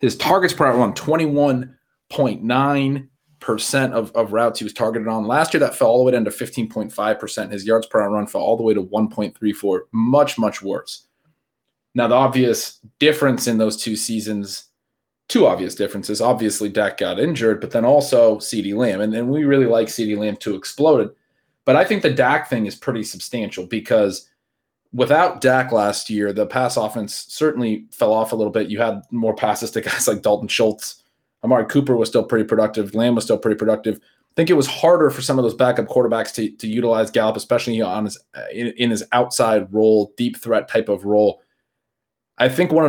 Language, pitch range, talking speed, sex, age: English, 105-125 Hz, 200 wpm, male, 30-49